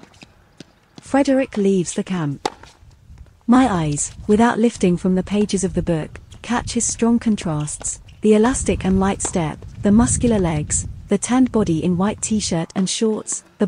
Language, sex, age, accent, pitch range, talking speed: Italian, female, 40-59, British, 165-220 Hz, 155 wpm